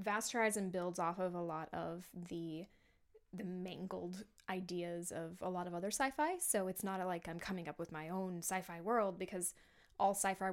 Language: English